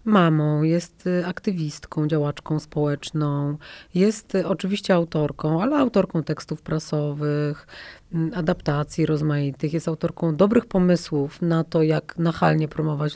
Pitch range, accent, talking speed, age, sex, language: 155-185 Hz, native, 105 wpm, 30-49, female, Polish